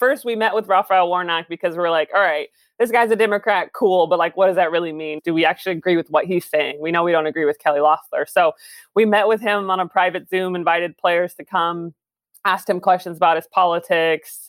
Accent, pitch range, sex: American, 170-210 Hz, female